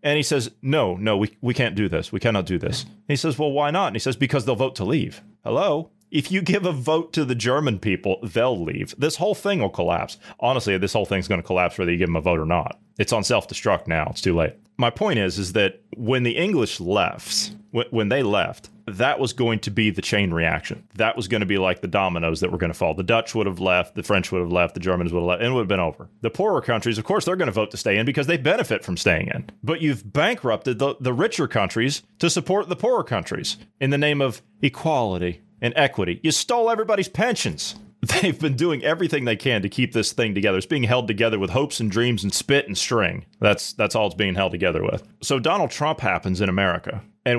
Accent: American